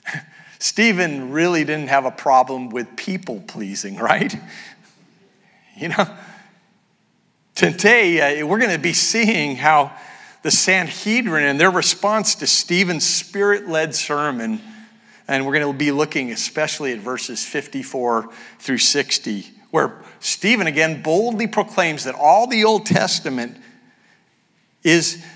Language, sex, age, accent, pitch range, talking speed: English, male, 50-69, American, 150-210 Hz, 120 wpm